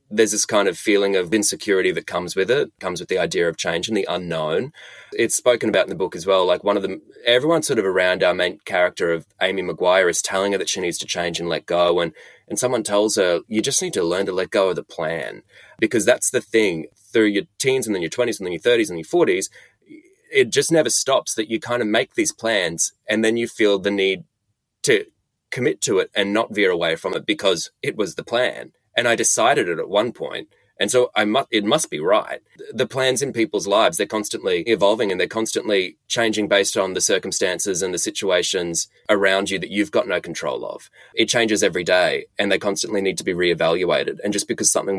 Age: 20-39